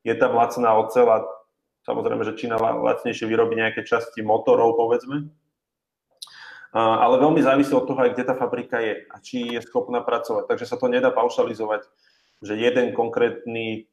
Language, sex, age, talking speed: Slovak, male, 20-39, 155 wpm